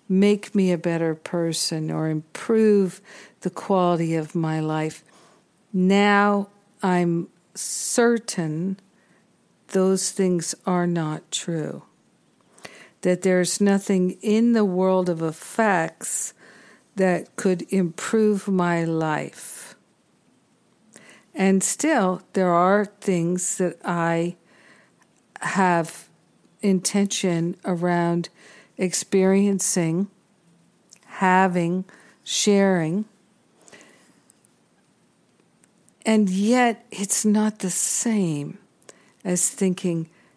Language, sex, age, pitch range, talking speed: English, female, 50-69, 175-205 Hz, 80 wpm